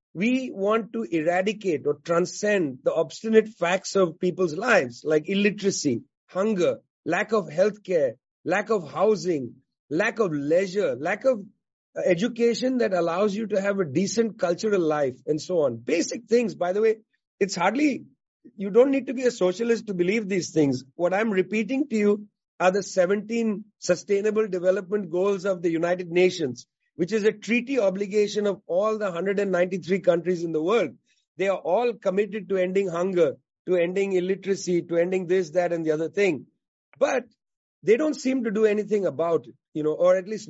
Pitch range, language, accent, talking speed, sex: 175-215 Hz, English, Indian, 175 wpm, male